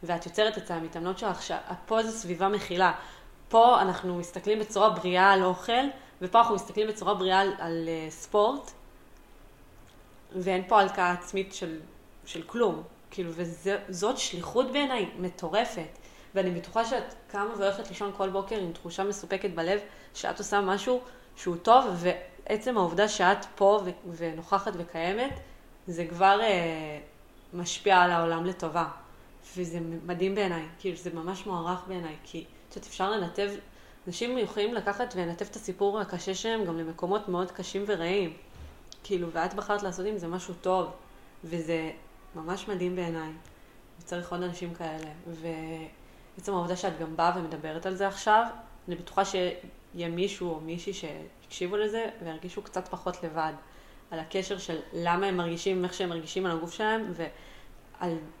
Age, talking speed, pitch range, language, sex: 20-39, 150 wpm, 170-200 Hz, Hebrew, female